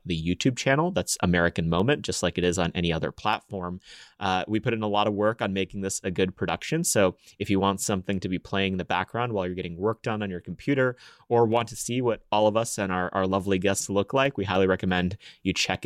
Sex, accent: male, American